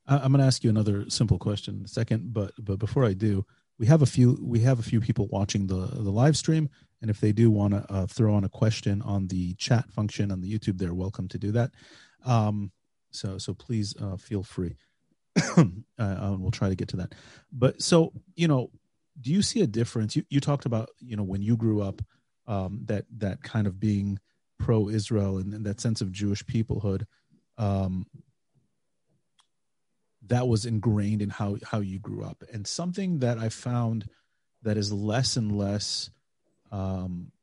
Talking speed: 195 wpm